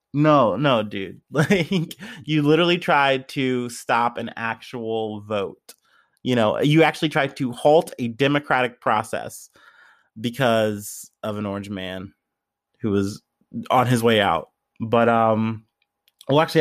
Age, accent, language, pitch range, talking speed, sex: 30-49, American, English, 115-150 Hz, 135 wpm, male